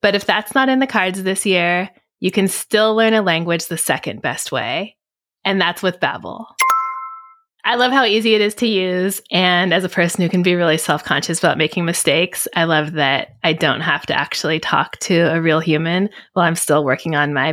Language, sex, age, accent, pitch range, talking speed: English, female, 20-39, American, 160-215 Hz, 210 wpm